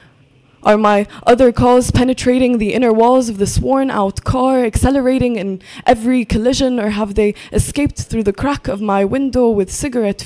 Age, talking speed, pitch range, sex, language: 20-39, 165 wpm, 200-255 Hz, female, English